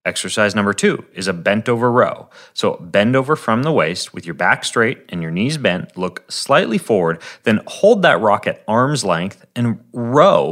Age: 30-49